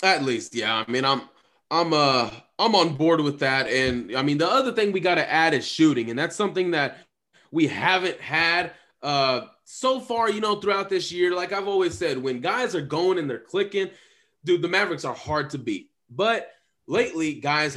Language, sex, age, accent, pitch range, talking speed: English, male, 20-39, American, 135-200 Hz, 205 wpm